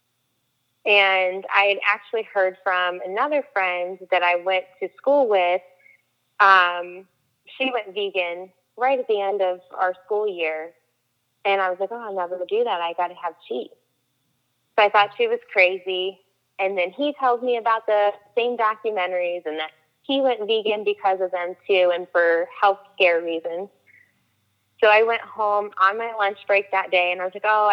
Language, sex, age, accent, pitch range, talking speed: English, female, 20-39, American, 175-205 Hz, 185 wpm